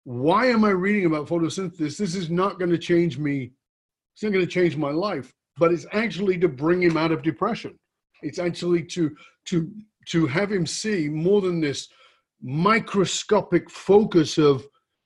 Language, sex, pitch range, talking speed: English, male, 155-195 Hz, 170 wpm